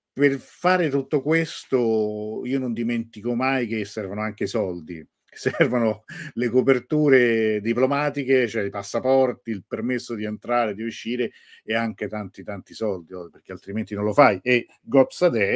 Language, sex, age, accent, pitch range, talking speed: Italian, male, 50-69, native, 105-135 Hz, 145 wpm